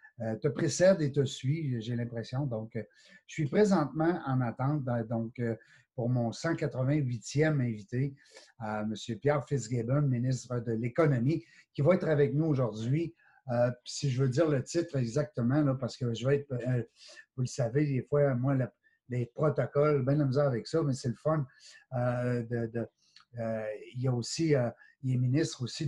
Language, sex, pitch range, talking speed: French, male, 120-150 Hz, 175 wpm